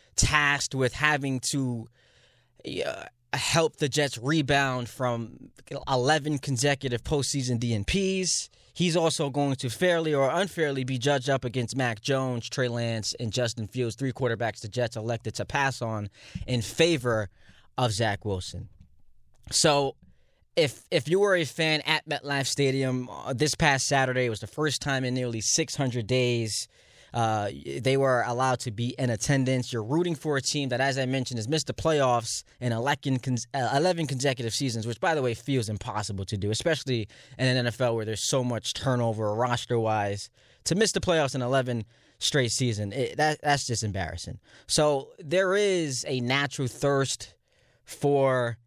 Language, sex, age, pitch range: English, male, 20-39, 115-140 Hz